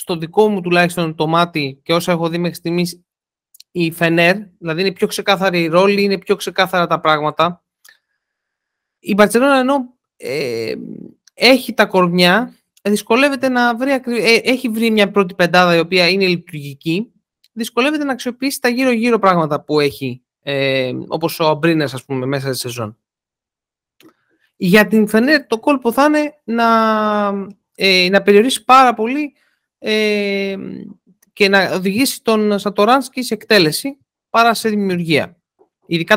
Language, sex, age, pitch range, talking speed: Greek, male, 30-49, 175-235 Hz, 145 wpm